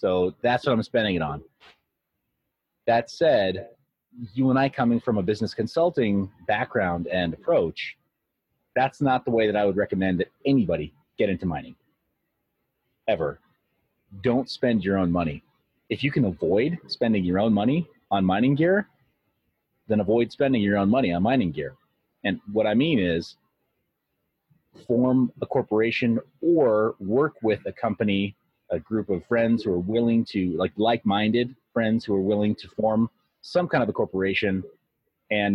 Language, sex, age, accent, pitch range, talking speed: English, male, 30-49, American, 95-125 Hz, 160 wpm